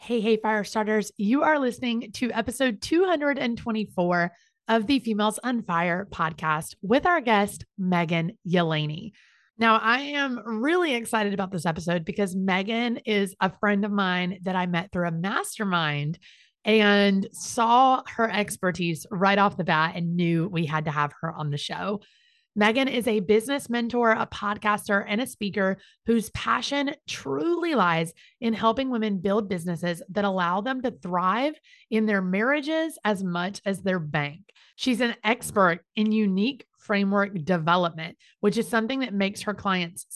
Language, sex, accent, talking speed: English, female, American, 160 wpm